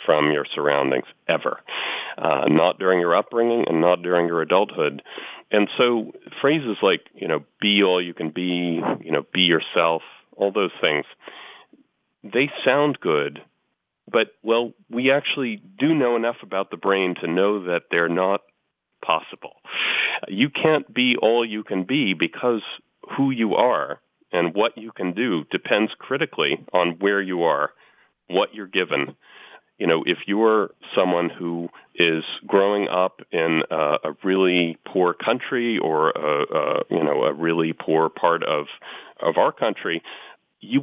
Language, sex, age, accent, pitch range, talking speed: English, male, 40-59, American, 85-115 Hz, 155 wpm